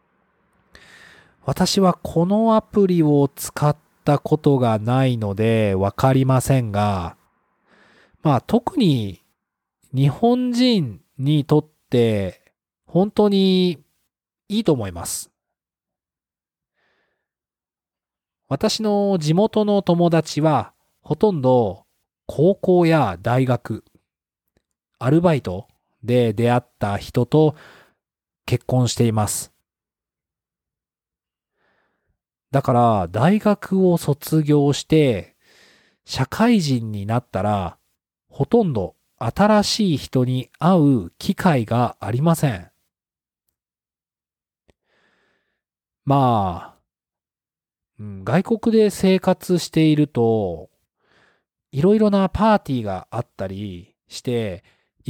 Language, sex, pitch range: Japanese, male, 115-180 Hz